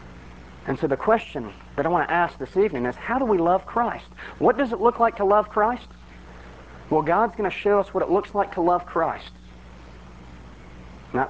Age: 40-59